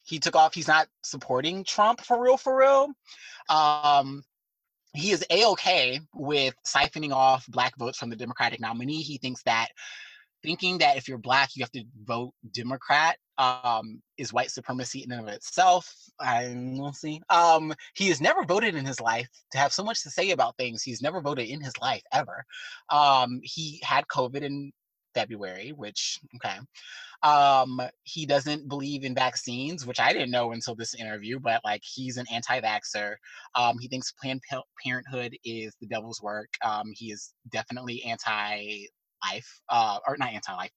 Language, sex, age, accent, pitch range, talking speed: English, male, 20-39, American, 120-155 Hz, 170 wpm